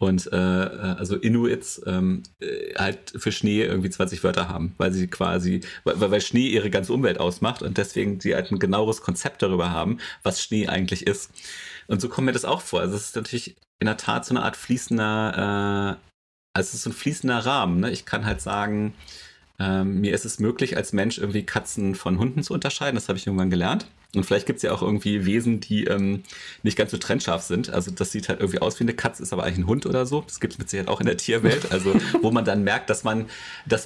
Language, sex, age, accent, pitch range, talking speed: German, male, 30-49, German, 90-115 Hz, 235 wpm